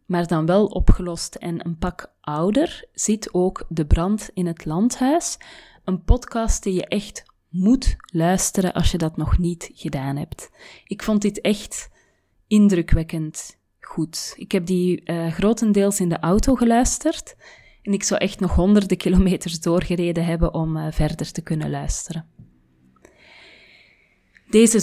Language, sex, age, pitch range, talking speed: Dutch, female, 30-49, 170-210 Hz, 145 wpm